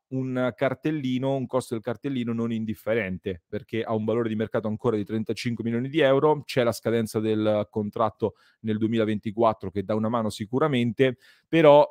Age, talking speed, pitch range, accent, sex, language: 30-49, 165 wpm, 110-130 Hz, native, male, Italian